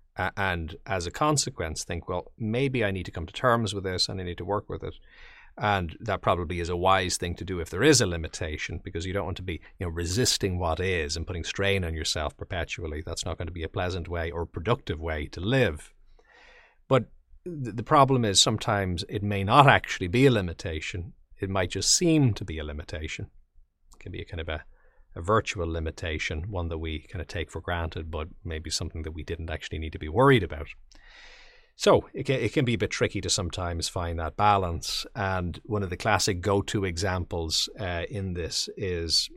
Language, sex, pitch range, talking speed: English, male, 85-105 Hz, 215 wpm